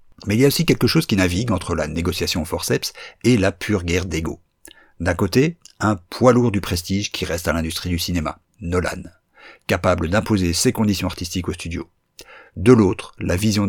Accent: French